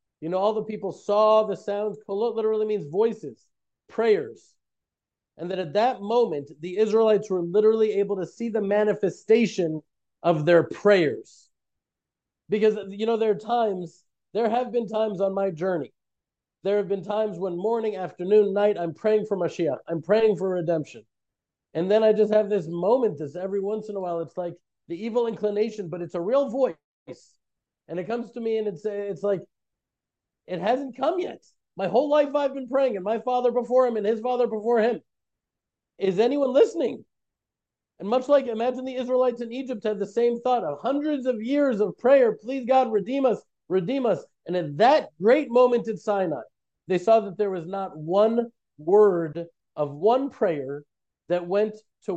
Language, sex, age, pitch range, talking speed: English, male, 40-59, 180-230 Hz, 185 wpm